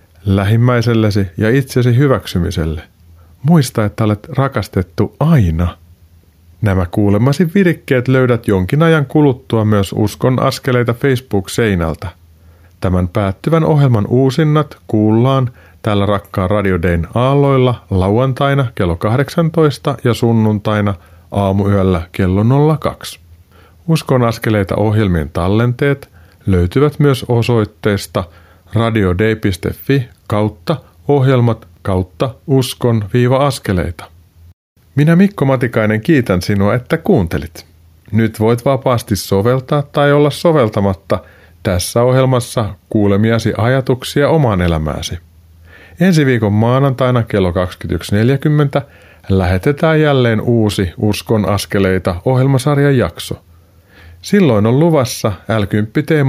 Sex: male